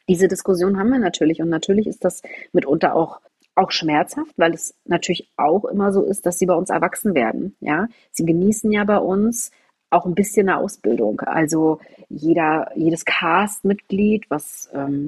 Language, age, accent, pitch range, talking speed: German, 30-49, German, 155-205 Hz, 170 wpm